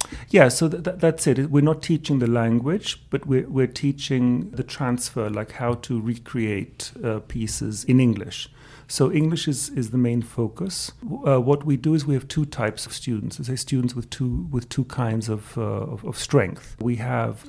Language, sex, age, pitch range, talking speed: English, male, 40-59, 115-140 Hz, 190 wpm